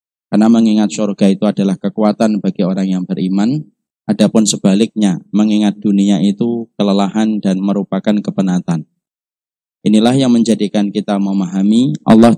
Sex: male